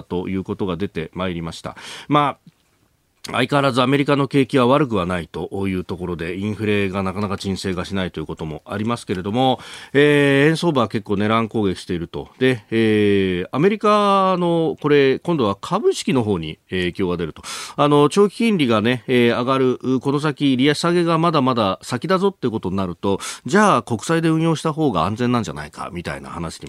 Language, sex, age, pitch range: Japanese, male, 40-59, 100-150 Hz